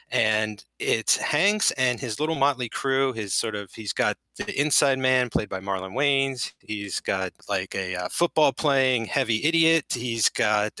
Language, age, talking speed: English, 30-49, 170 wpm